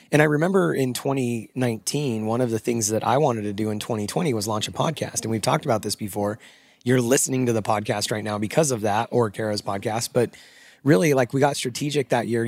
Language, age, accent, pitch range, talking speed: English, 30-49, American, 115-140 Hz, 225 wpm